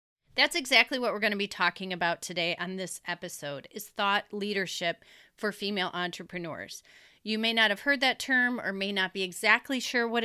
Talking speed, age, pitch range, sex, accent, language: 195 wpm, 30-49, 180-225 Hz, female, American, English